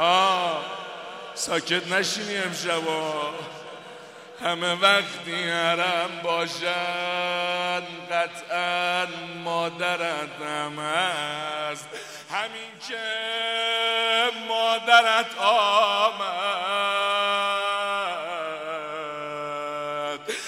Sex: male